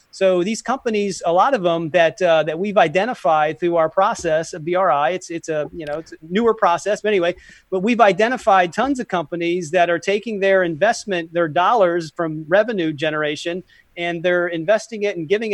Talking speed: 195 wpm